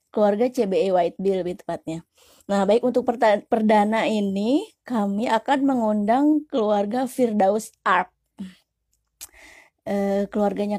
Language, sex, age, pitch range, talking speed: Indonesian, female, 20-39, 195-235 Hz, 105 wpm